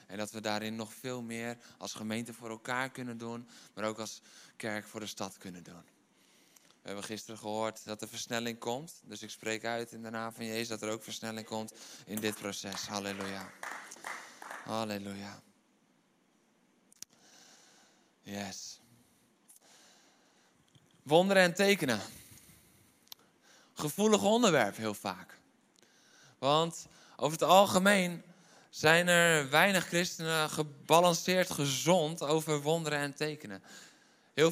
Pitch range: 115-160 Hz